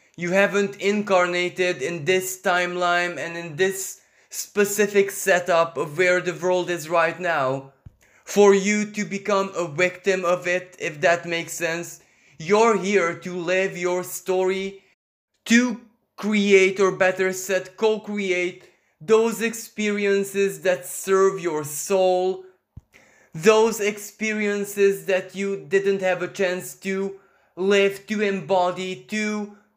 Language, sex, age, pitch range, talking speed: English, male, 20-39, 175-200 Hz, 125 wpm